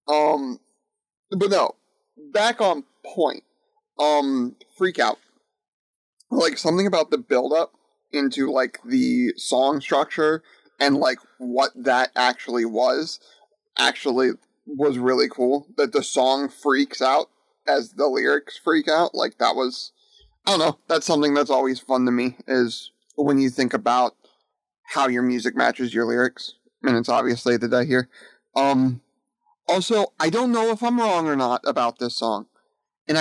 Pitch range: 125-210 Hz